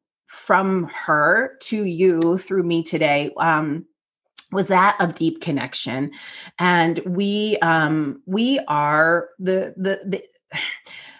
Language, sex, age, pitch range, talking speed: English, female, 30-49, 160-190 Hz, 115 wpm